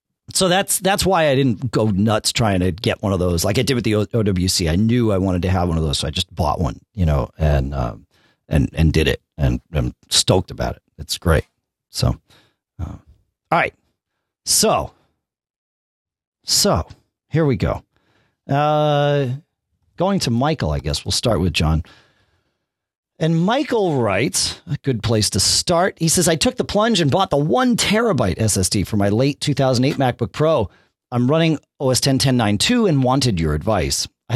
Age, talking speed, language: 40-59, 180 wpm, English